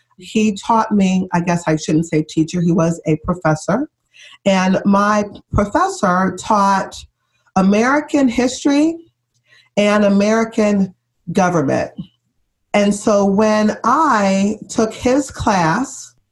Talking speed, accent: 105 wpm, American